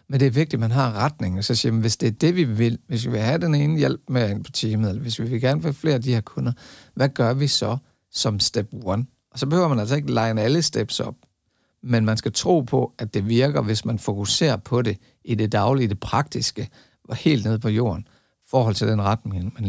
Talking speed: 260 wpm